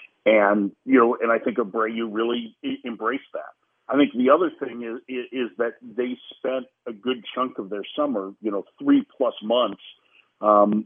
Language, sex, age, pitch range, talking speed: English, male, 50-69, 105-130 Hz, 170 wpm